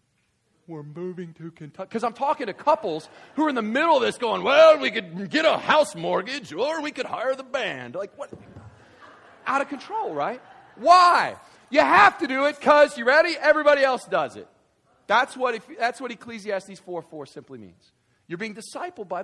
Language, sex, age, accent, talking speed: English, male, 40-59, American, 195 wpm